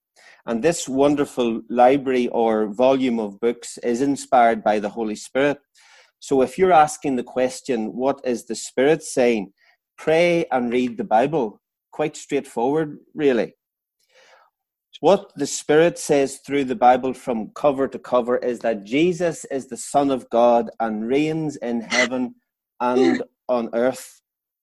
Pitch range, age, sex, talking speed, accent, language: 120-140 Hz, 30-49, male, 145 wpm, Irish, English